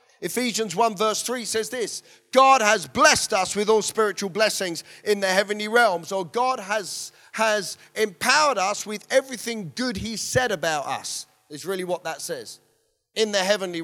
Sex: male